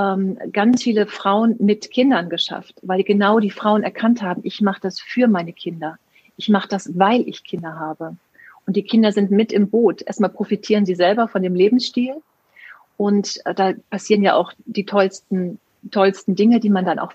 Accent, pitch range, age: German, 185-215 Hz, 40-59